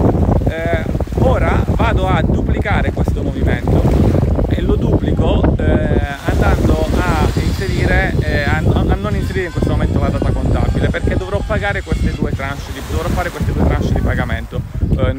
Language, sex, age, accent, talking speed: Italian, male, 30-49, native, 155 wpm